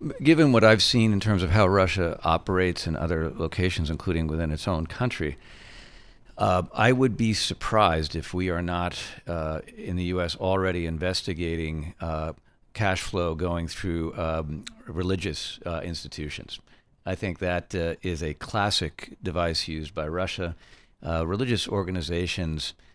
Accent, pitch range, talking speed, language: American, 80-95 Hz, 145 wpm, English